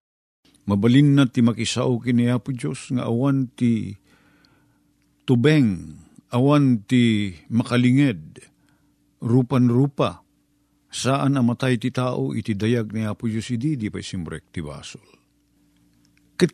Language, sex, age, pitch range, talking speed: Filipino, male, 50-69, 105-155 Hz, 110 wpm